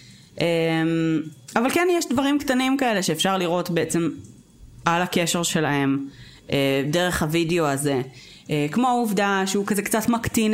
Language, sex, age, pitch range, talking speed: Hebrew, female, 20-39, 155-200 Hz, 135 wpm